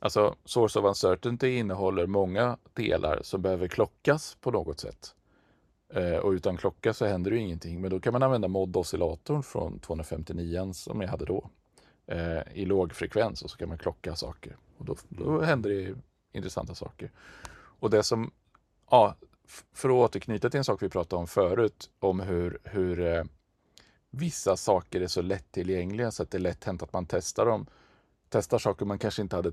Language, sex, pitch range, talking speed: Swedish, male, 85-105 Hz, 180 wpm